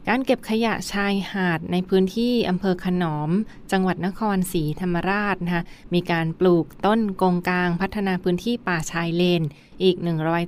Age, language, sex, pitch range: 20-39, Thai, female, 170-195 Hz